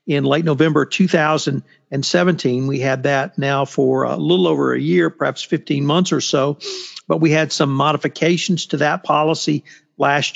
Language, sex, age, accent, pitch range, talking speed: English, male, 50-69, American, 140-170 Hz, 160 wpm